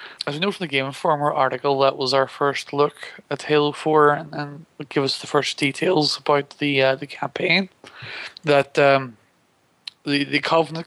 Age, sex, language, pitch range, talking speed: 20-39, male, English, 130-145 Hz, 180 wpm